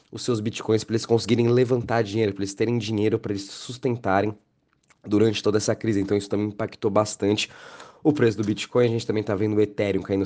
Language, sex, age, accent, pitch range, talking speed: Portuguese, male, 20-39, Brazilian, 95-110 Hz, 210 wpm